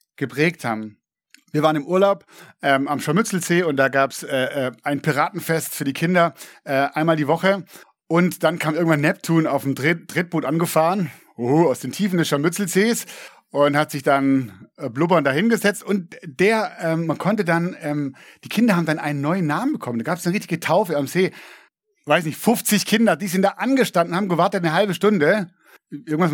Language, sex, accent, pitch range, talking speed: German, male, German, 145-185 Hz, 195 wpm